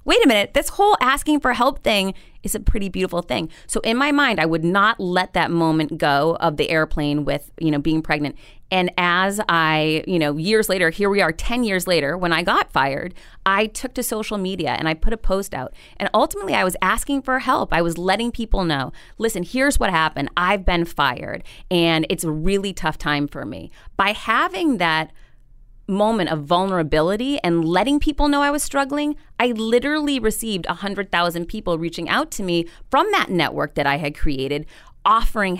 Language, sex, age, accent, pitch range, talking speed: English, female, 30-49, American, 160-225 Hz, 200 wpm